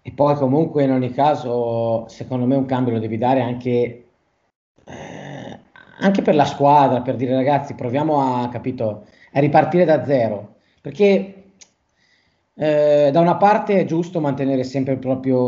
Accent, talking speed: native, 155 wpm